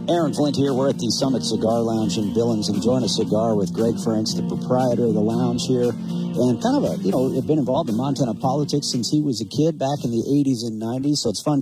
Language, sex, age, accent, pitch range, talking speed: English, male, 50-69, American, 115-150 Hz, 260 wpm